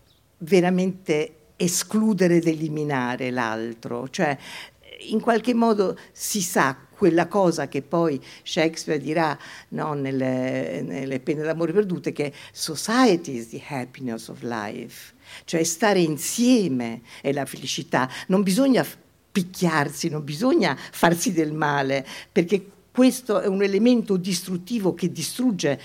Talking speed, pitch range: 120 wpm, 140-190 Hz